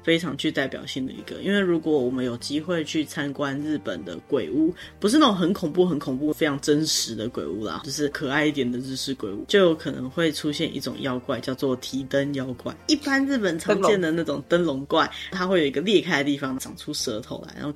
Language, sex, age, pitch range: Chinese, female, 10-29, 140-190 Hz